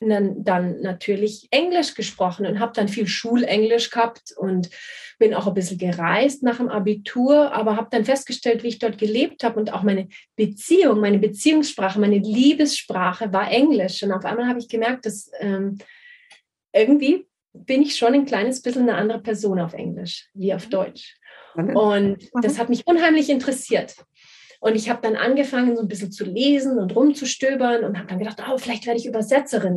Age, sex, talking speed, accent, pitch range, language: 30-49, female, 180 wpm, German, 200-255 Hz, English